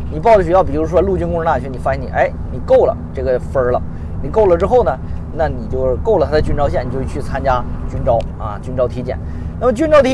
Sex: male